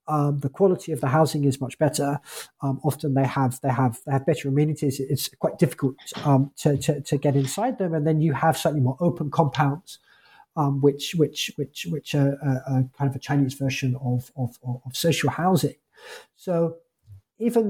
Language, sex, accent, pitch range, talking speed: English, male, British, 135-175 Hz, 195 wpm